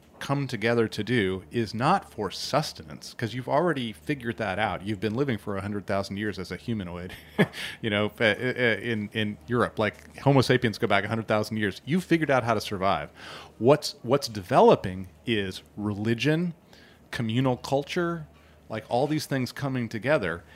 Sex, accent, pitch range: male, American, 100-130 Hz